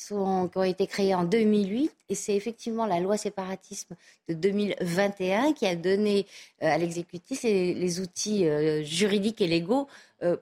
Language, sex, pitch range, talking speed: French, female, 170-225 Hz, 165 wpm